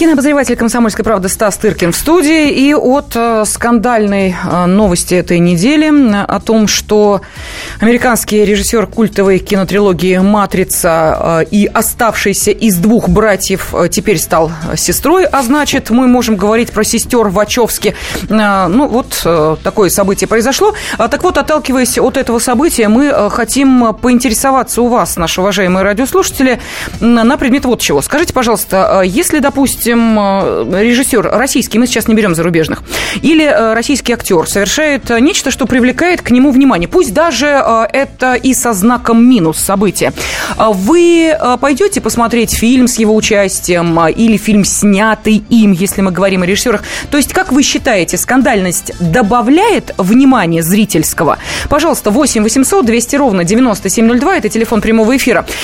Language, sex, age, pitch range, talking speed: Russian, female, 20-39, 200-270 Hz, 135 wpm